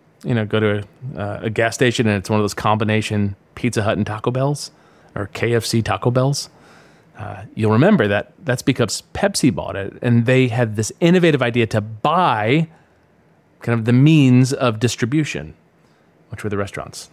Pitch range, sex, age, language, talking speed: 120-170 Hz, male, 30-49, English, 175 wpm